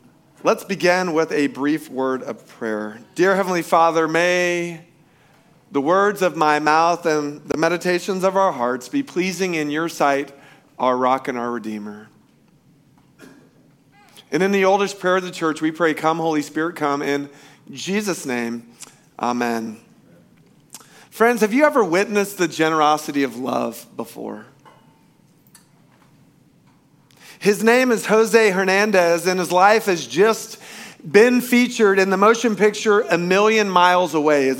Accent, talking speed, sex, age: American, 140 wpm, male, 40-59